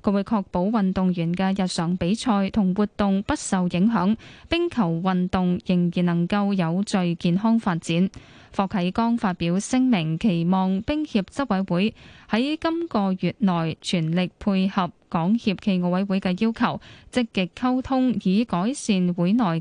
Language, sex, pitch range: Chinese, female, 180-220 Hz